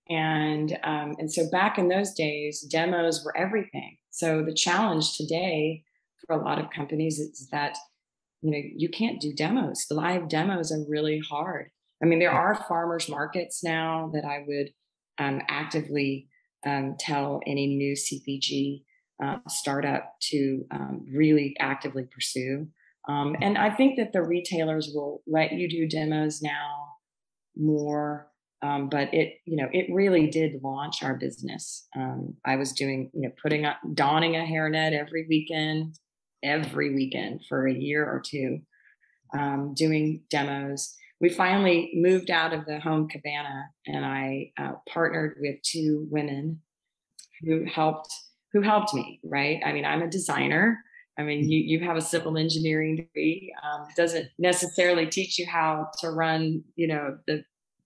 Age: 30-49